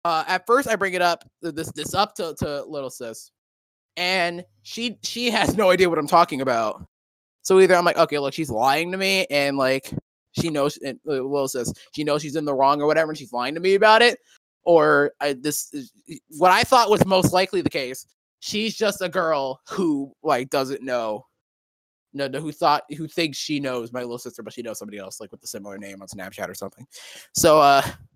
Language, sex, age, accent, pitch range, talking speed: English, male, 20-39, American, 135-195 Hz, 220 wpm